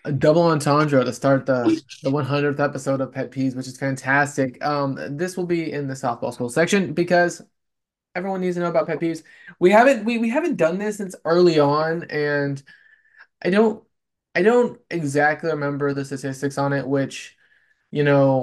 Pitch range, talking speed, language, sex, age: 145-180 Hz, 180 wpm, English, male, 20-39